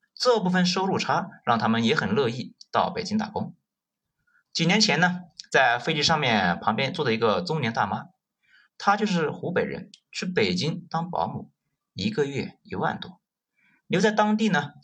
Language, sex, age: Chinese, male, 30-49